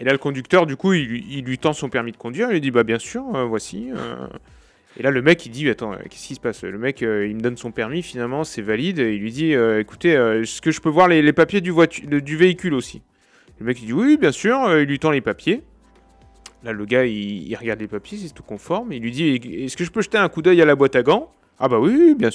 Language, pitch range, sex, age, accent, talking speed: French, 120-165 Hz, male, 30-49, French, 295 wpm